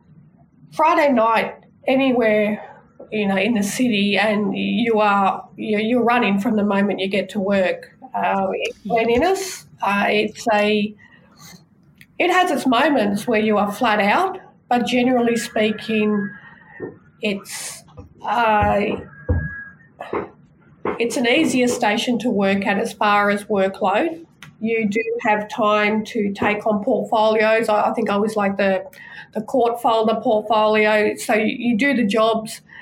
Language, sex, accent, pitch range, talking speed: English, female, Australian, 205-240 Hz, 130 wpm